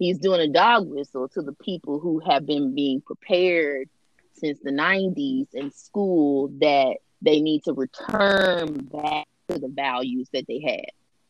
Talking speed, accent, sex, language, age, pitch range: 160 wpm, American, female, English, 20-39, 140-170 Hz